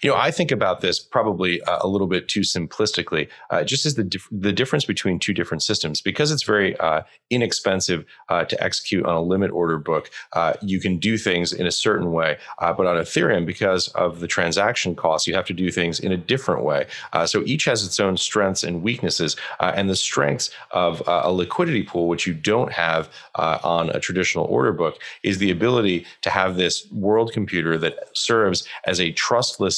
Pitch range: 85-100 Hz